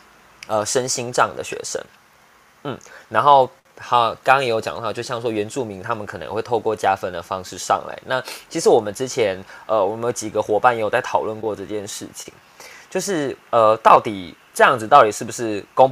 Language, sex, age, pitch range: Chinese, male, 20-39, 105-155 Hz